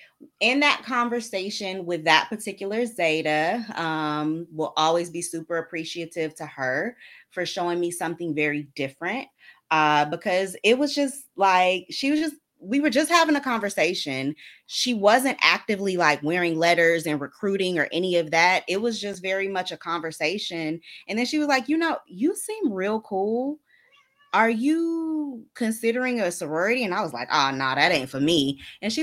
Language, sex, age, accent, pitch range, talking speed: English, female, 20-39, American, 155-220 Hz, 175 wpm